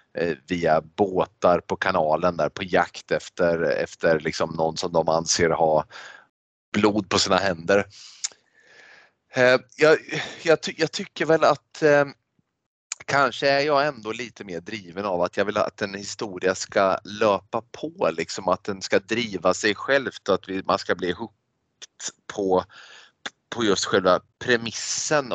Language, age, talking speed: Swedish, 30-49, 135 wpm